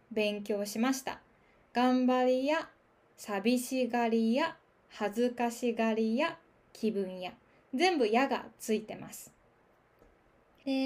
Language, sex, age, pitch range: Japanese, female, 20-39, 220-280 Hz